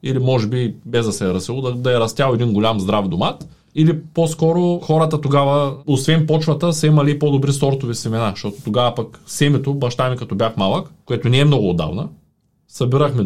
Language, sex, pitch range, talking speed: Bulgarian, male, 120-155 Hz, 190 wpm